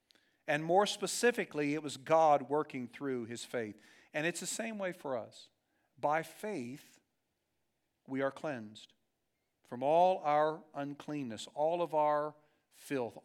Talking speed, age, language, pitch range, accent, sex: 135 wpm, 50-69, English, 130-190 Hz, American, male